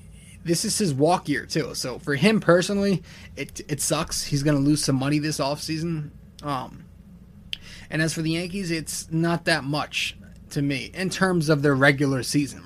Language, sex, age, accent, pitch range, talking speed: English, male, 20-39, American, 135-160 Hz, 190 wpm